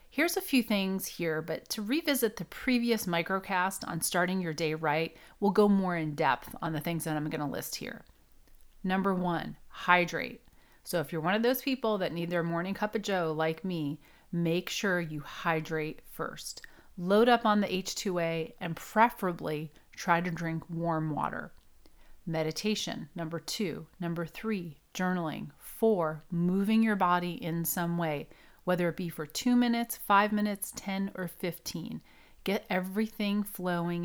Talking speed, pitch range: 165 wpm, 165-215 Hz